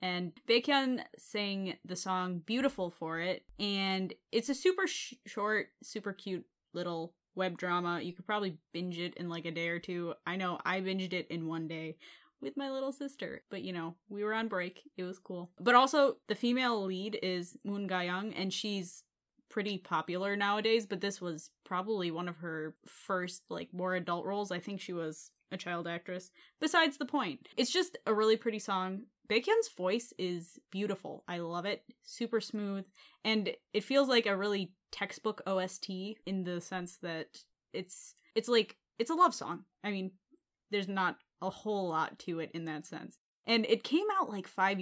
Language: English